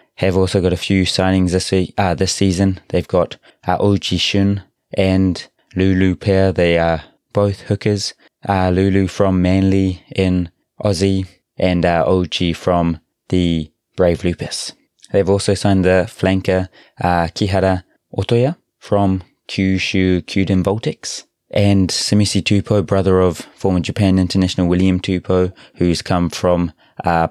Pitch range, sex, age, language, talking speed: 90-100 Hz, male, 20-39, English, 135 wpm